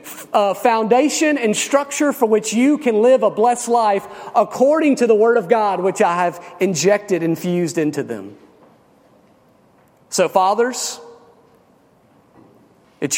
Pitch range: 155-220 Hz